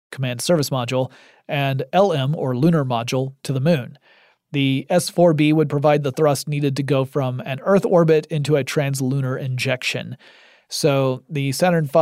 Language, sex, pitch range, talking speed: English, male, 130-160 Hz, 155 wpm